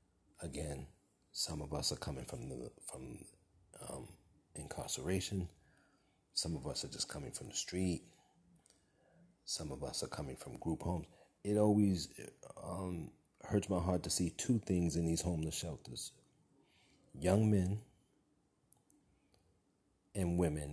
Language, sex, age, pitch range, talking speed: English, male, 30-49, 80-90 Hz, 135 wpm